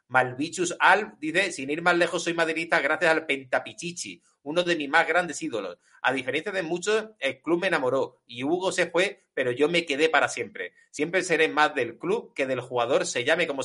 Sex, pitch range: male, 145-190 Hz